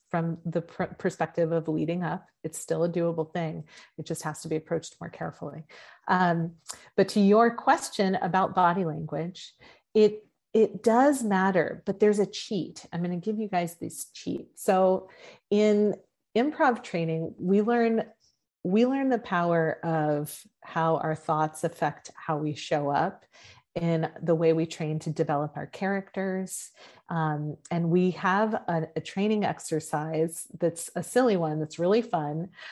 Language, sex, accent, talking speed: English, female, American, 160 wpm